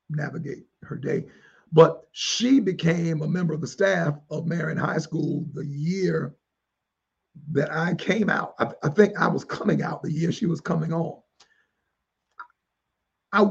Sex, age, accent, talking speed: male, 50-69, American, 155 wpm